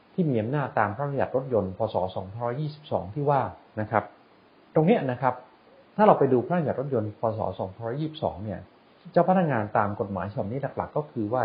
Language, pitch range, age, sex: English, 105-145 Hz, 30-49, male